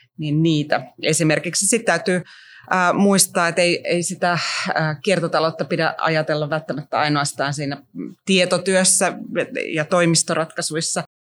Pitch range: 145-175 Hz